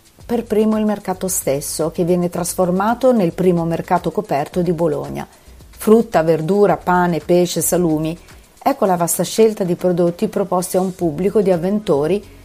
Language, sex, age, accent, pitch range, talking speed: Italian, female, 40-59, native, 165-210 Hz, 150 wpm